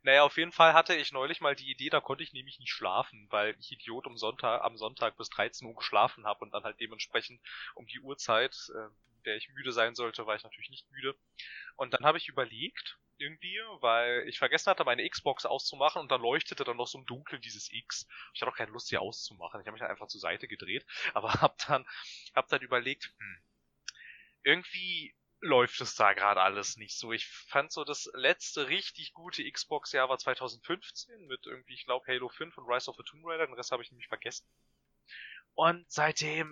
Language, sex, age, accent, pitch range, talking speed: German, male, 20-39, German, 115-140 Hz, 210 wpm